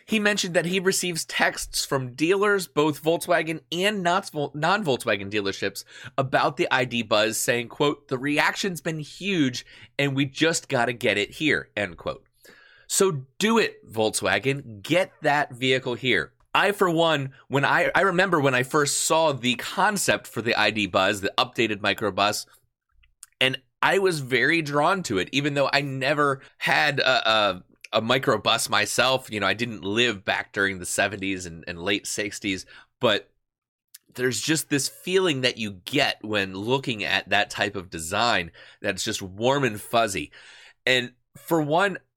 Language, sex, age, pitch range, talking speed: English, male, 30-49, 115-165 Hz, 165 wpm